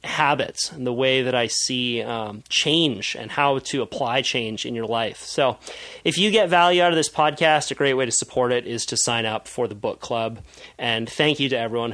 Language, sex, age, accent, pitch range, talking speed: English, male, 30-49, American, 120-150 Hz, 225 wpm